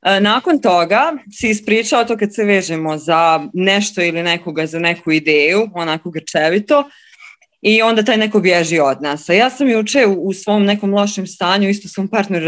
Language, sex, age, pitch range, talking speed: Croatian, female, 20-39, 180-230 Hz, 175 wpm